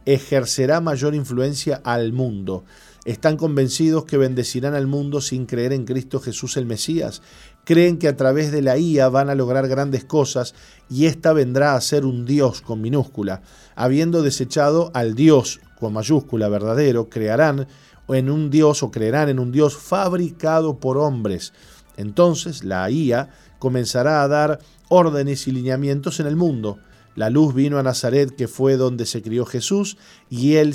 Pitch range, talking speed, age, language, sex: 120-145 Hz, 160 wpm, 40-59, Spanish, male